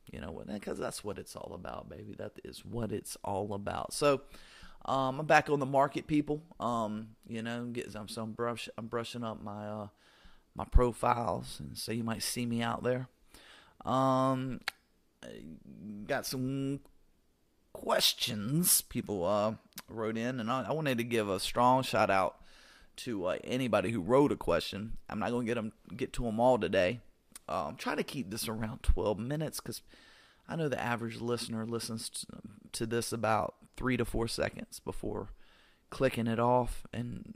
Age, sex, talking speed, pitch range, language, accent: 30-49, male, 180 wpm, 110-130 Hz, English, American